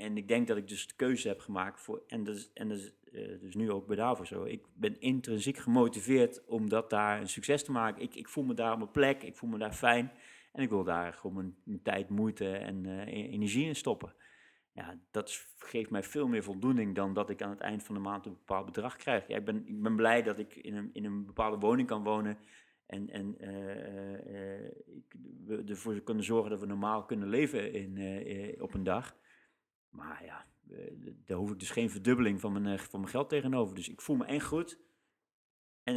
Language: Dutch